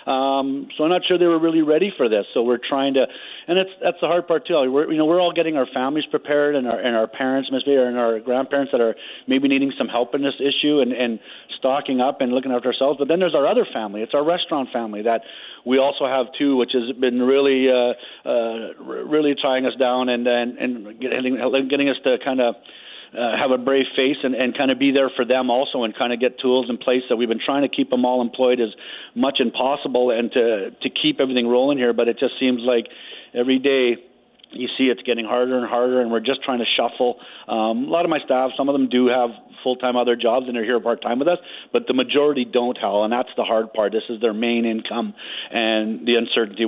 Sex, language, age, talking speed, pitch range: male, English, 40-59, 245 wpm, 120-135 Hz